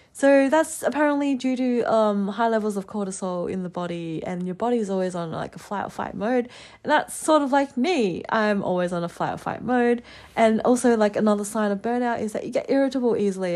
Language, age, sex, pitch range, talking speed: English, 20-39, female, 180-230 Hz, 230 wpm